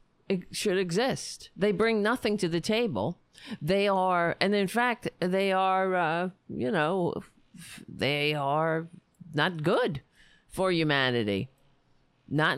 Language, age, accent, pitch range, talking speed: English, 50-69, American, 165-245 Hz, 125 wpm